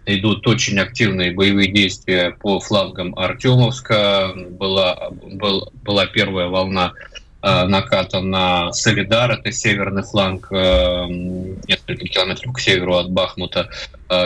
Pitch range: 90-105 Hz